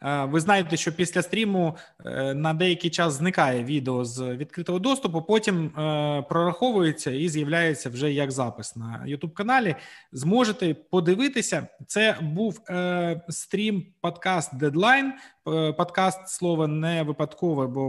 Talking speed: 115 wpm